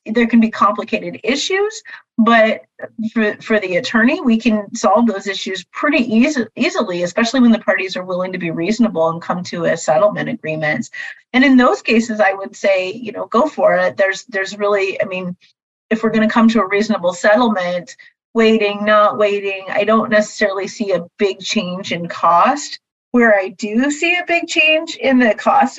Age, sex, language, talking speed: 30-49, female, English, 190 wpm